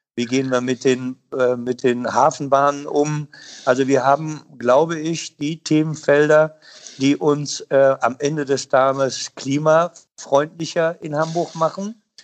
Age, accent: 50-69, German